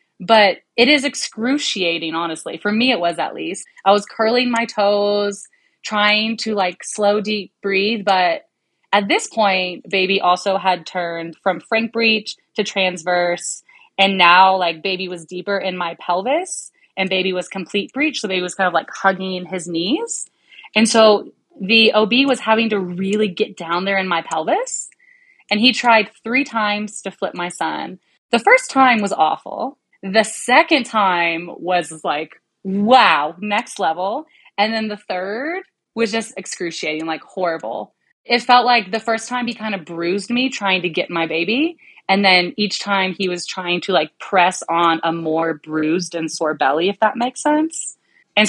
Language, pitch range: English, 180-240 Hz